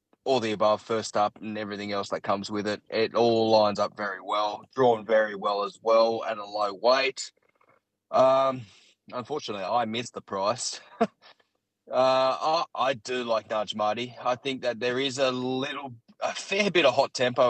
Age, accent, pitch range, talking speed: 20-39, Australian, 110-130 Hz, 180 wpm